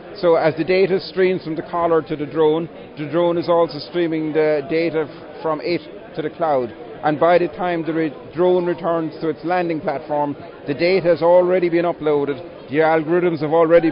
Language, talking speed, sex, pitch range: English, 190 wpm, male, 155-175 Hz